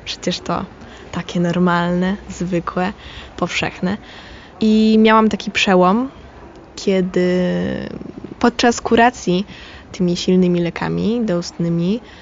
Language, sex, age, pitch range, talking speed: Polish, female, 20-39, 180-220 Hz, 85 wpm